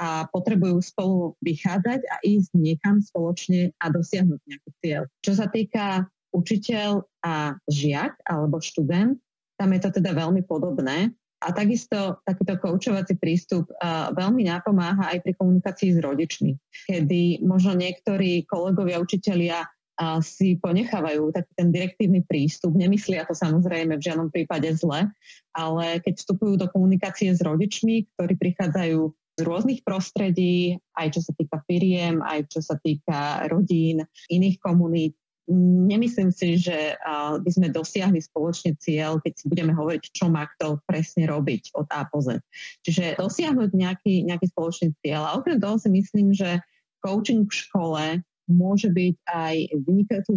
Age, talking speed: 30-49, 145 wpm